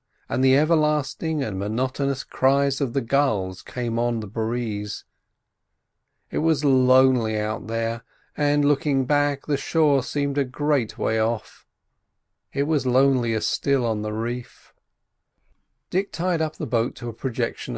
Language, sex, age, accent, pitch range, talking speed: English, male, 40-59, British, 110-140 Hz, 145 wpm